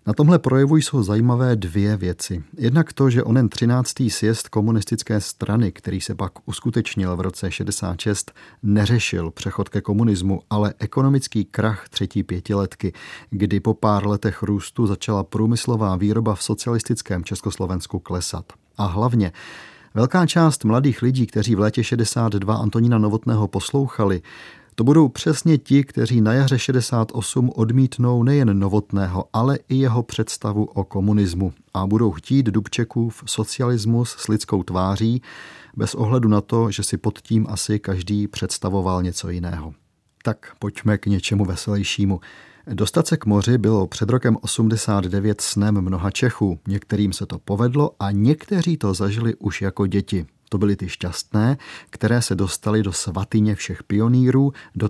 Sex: male